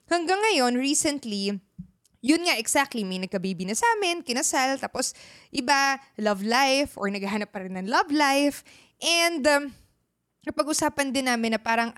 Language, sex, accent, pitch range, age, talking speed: Filipino, female, native, 220-290 Hz, 20-39, 155 wpm